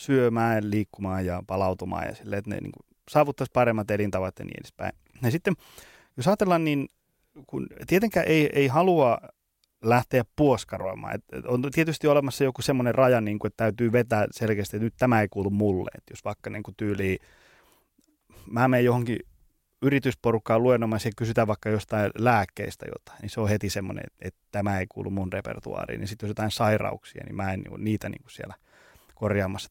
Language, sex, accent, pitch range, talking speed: Finnish, male, native, 105-135 Hz, 180 wpm